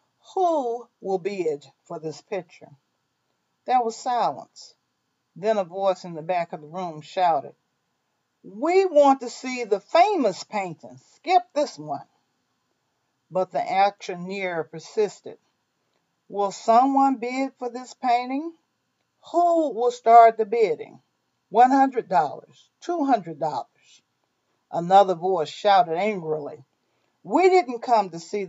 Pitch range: 165-240 Hz